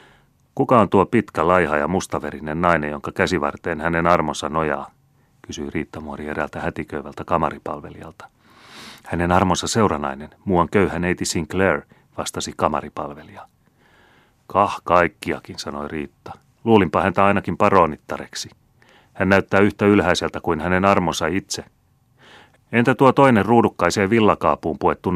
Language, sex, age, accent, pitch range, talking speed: Finnish, male, 30-49, native, 80-100 Hz, 115 wpm